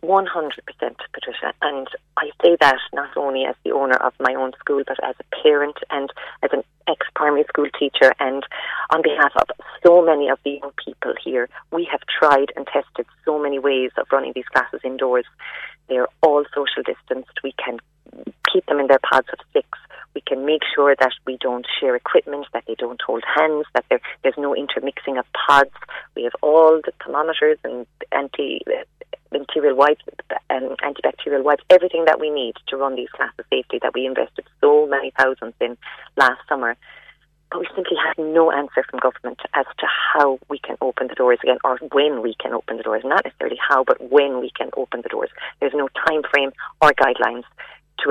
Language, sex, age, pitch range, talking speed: English, female, 30-49, 135-175 Hz, 190 wpm